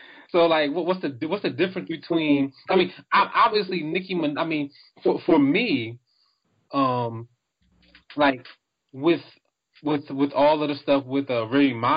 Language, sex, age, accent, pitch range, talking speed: English, male, 20-39, American, 125-165 Hz, 160 wpm